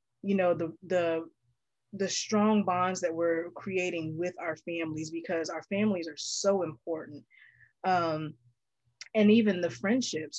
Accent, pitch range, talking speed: American, 165-195 Hz, 140 wpm